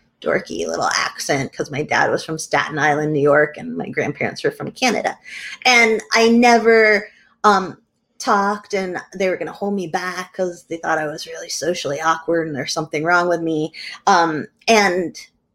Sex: female